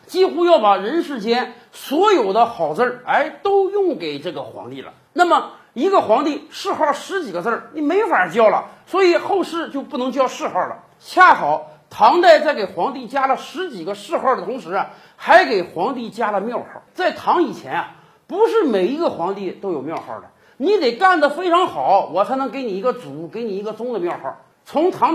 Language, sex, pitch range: Chinese, male, 225-355 Hz